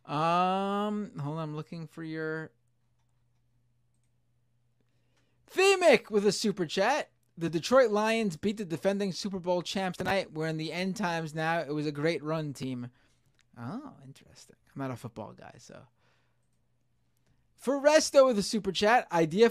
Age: 20-39